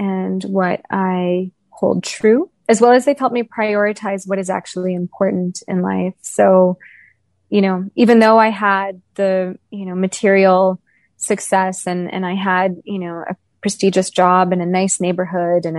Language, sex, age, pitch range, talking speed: English, female, 20-39, 180-205 Hz, 165 wpm